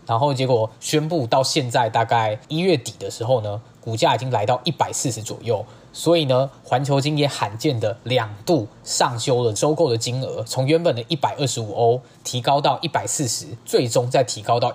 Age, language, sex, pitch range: 20-39, Chinese, male, 115-145 Hz